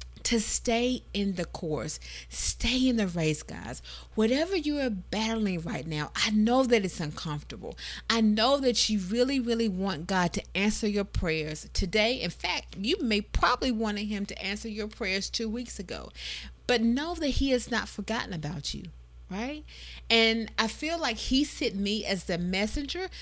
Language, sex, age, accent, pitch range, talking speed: English, female, 40-59, American, 170-235 Hz, 175 wpm